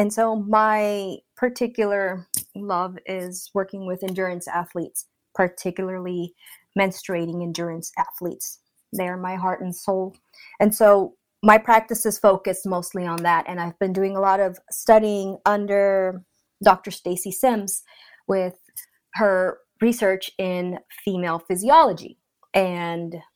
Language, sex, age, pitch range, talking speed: English, female, 20-39, 185-220 Hz, 125 wpm